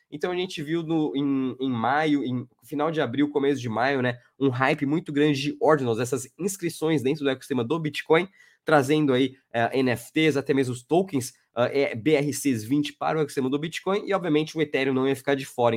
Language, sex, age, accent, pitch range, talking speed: Portuguese, male, 20-39, Brazilian, 130-155 Hz, 205 wpm